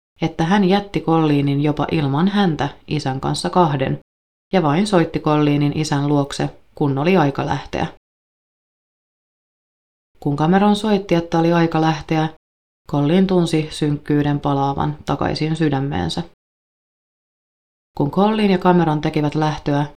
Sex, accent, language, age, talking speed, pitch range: female, native, Finnish, 30-49, 115 wpm, 145-175 Hz